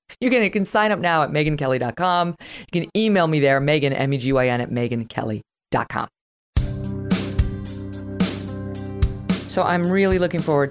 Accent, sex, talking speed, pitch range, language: American, female, 125 wpm, 125-165 Hz, English